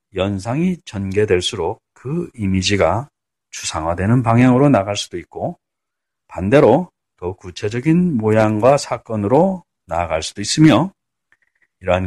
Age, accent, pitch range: 40-59, native, 95-135 Hz